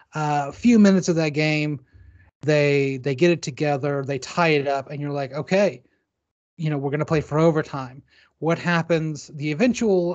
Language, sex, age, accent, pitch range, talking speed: English, male, 30-49, American, 135-170 Hz, 185 wpm